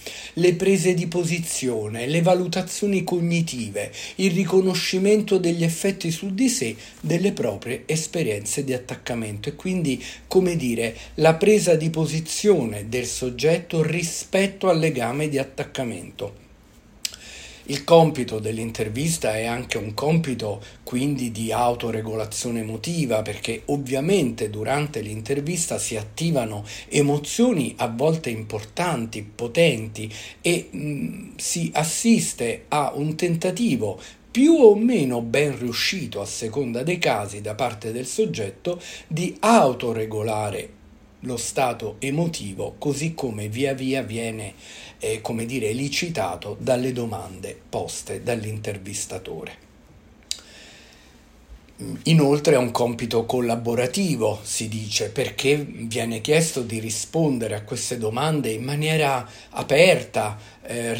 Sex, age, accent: male, 50-69, native